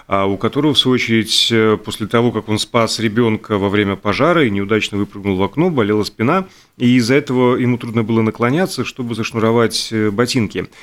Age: 30-49